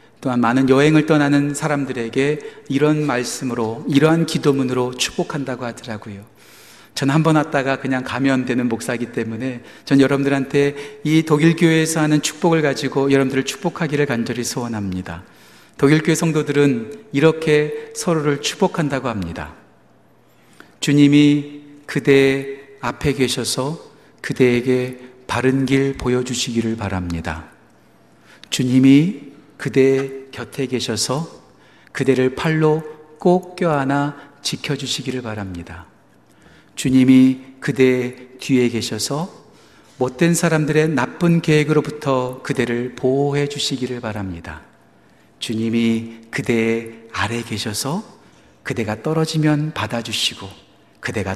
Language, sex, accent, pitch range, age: Korean, male, native, 120-150 Hz, 40-59